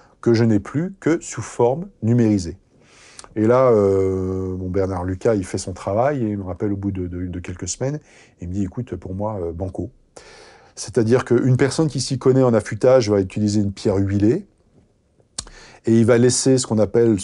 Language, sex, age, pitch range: French, male, 40-59, 100-125 Hz